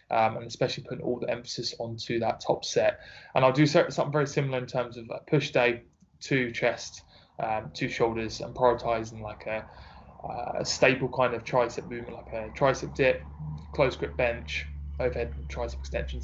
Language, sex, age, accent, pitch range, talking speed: English, male, 20-39, British, 115-135 Hz, 180 wpm